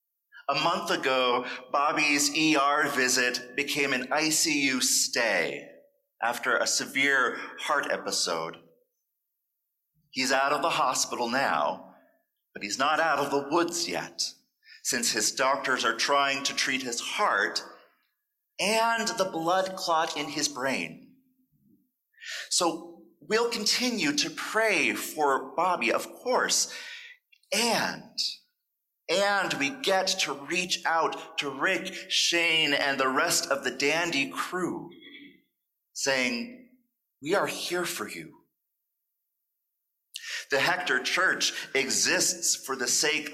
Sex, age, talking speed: male, 40-59, 115 wpm